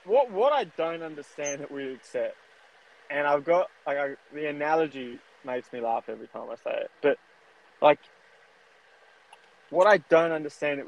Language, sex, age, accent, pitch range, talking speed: English, male, 20-39, Australian, 135-165 Hz, 165 wpm